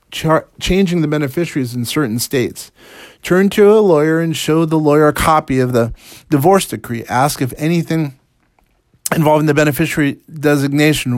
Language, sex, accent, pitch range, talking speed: English, male, American, 125-155 Hz, 145 wpm